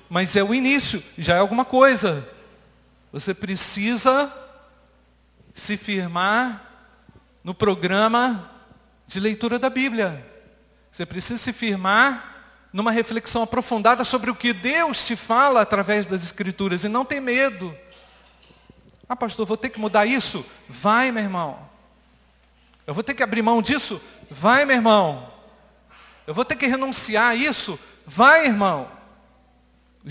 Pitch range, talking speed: 145-230 Hz, 135 wpm